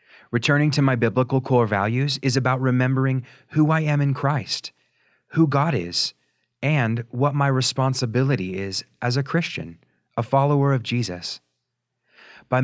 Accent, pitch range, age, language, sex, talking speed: American, 110-140 Hz, 30-49, English, male, 140 wpm